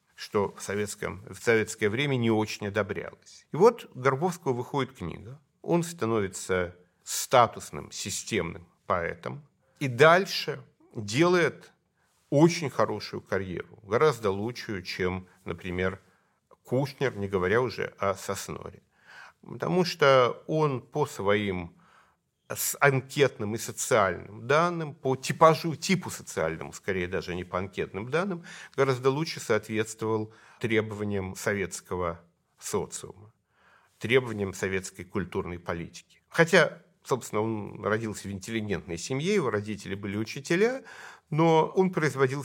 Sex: male